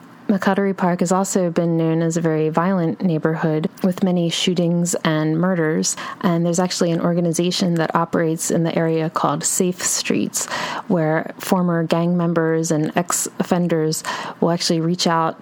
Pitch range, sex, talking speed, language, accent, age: 165-190 Hz, female, 150 wpm, English, American, 20-39